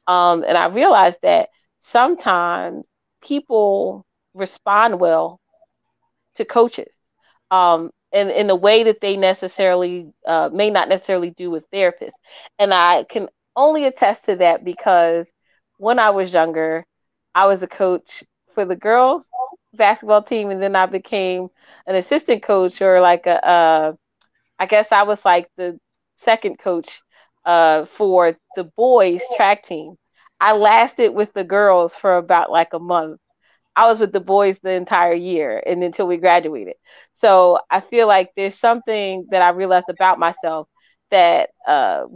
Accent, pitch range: American, 175-215 Hz